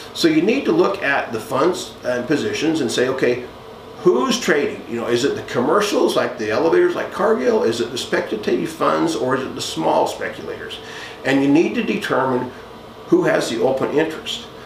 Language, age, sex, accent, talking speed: English, 50-69, male, American, 190 wpm